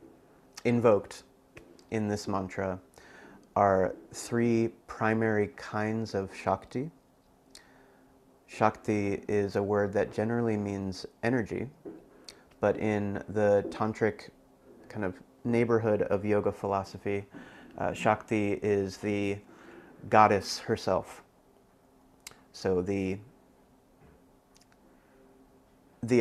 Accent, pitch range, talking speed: American, 90-110 Hz, 85 wpm